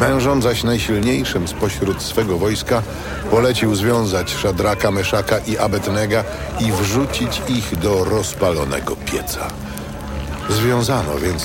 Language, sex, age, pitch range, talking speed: Polish, male, 60-79, 85-120 Hz, 105 wpm